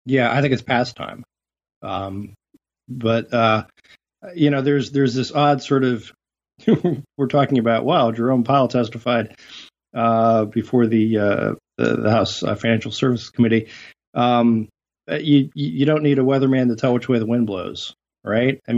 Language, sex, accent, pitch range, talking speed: English, male, American, 110-130 Hz, 155 wpm